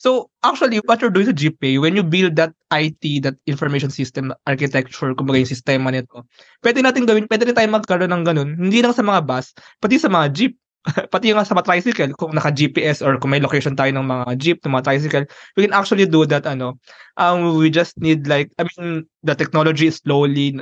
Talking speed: 210 wpm